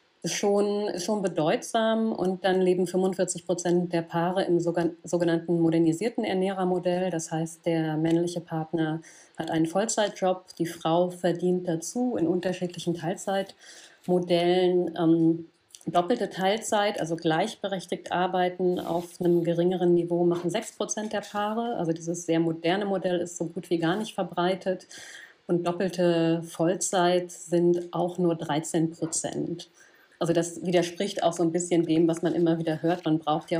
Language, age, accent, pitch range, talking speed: German, 40-59, German, 170-190 Hz, 140 wpm